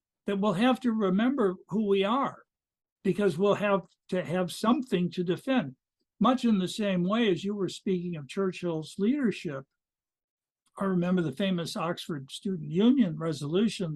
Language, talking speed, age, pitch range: English, 155 wpm, 60-79, 170-205 Hz